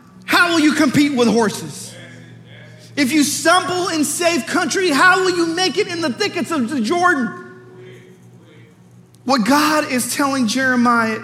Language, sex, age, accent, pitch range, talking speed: English, male, 40-59, American, 185-305 Hz, 150 wpm